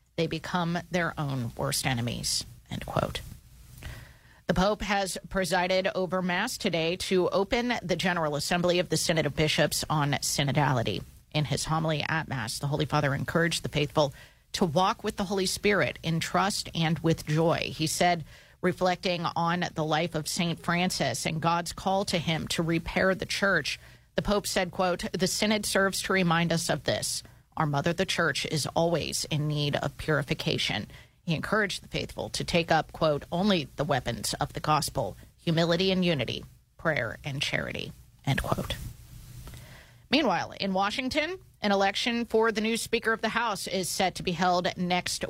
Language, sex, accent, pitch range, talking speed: English, female, American, 145-185 Hz, 170 wpm